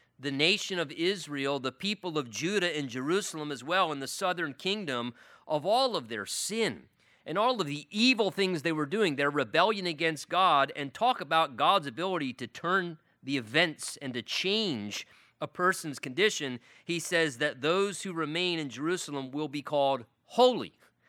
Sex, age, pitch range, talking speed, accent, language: male, 30-49, 145-195 Hz, 175 wpm, American, English